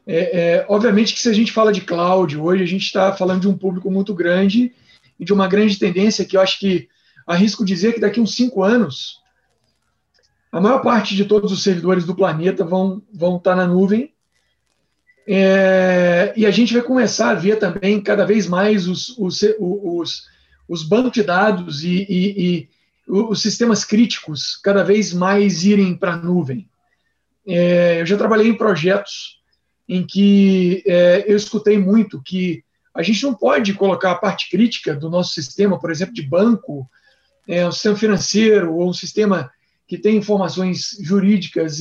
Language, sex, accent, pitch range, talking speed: English, male, Brazilian, 180-215 Hz, 175 wpm